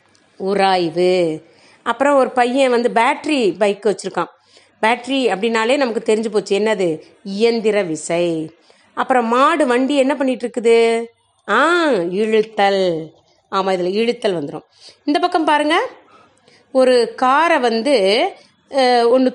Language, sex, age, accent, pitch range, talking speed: Tamil, female, 30-49, native, 205-285 Hz, 100 wpm